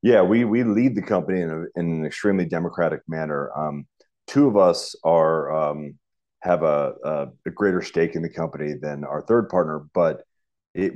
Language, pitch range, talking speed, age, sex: English, 80-100 Hz, 185 wpm, 30-49, male